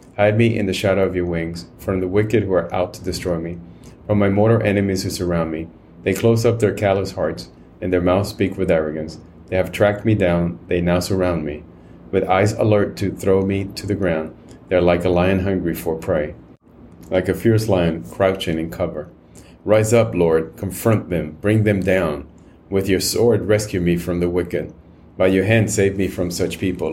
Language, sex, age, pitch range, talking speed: English, male, 30-49, 85-100 Hz, 205 wpm